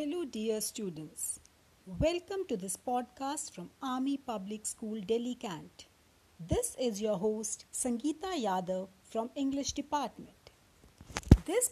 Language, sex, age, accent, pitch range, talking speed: English, female, 60-79, Indian, 200-290 Hz, 115 wpm